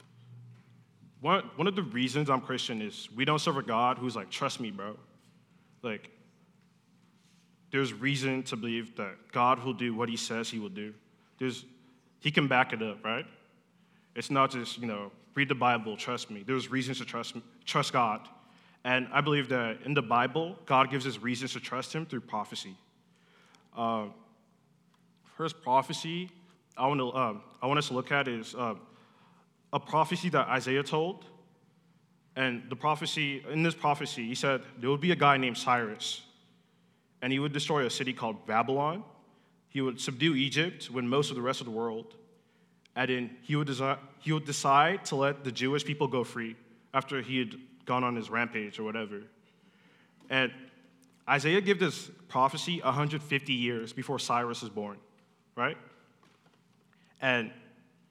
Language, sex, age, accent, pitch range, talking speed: English, male, 20-39, American, 120-155 Hz, 165 wpm